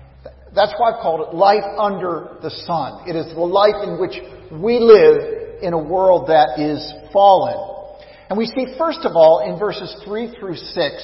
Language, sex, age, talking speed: English, male, 50-69, 185 wpm